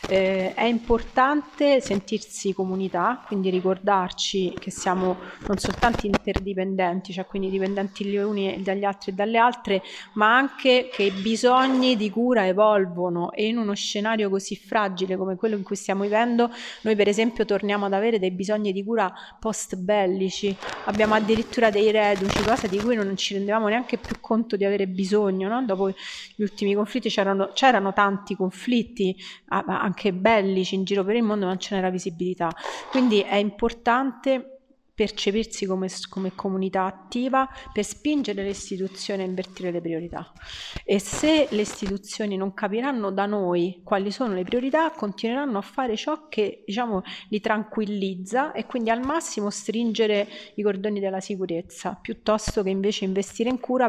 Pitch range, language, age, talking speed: 190-225 Hz, Italian, 30-49, 155 wpm